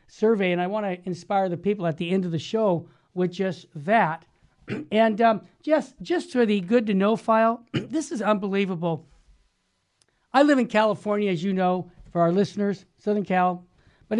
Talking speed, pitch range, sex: 180 wpm, 170-220 Hz, male